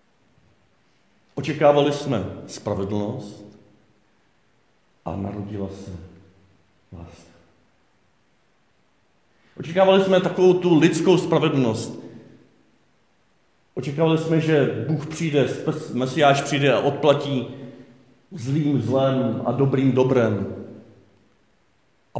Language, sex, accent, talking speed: Czech, male, native, 75 wpm